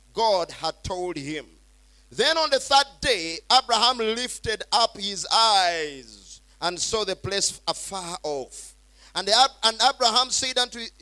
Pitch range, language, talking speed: 200-250 Hz, English, 140 wpm